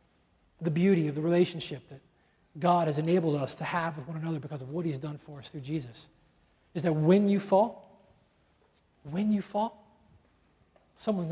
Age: 40-59